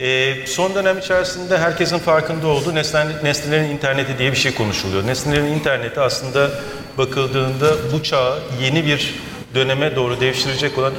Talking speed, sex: 130 wpm, male